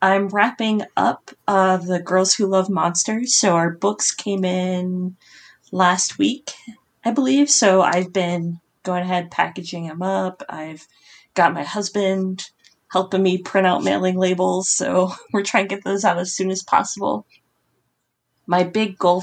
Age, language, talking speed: 20-39, English, 155 wpm